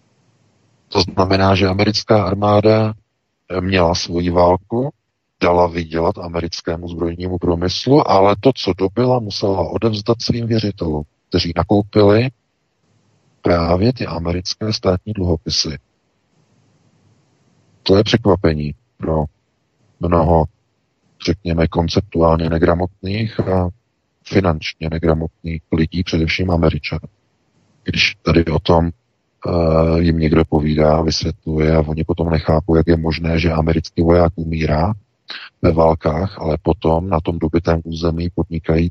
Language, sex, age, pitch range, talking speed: Czech, male, 40-59, 80-100 Hz, 110 wpm